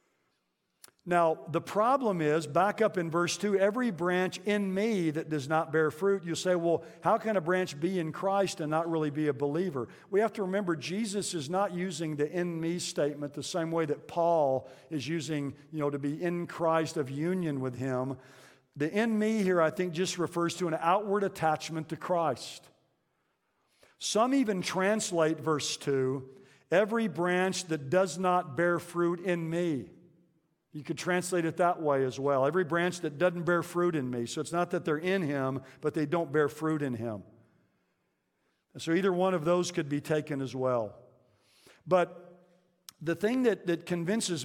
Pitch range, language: 150-180 Hz, English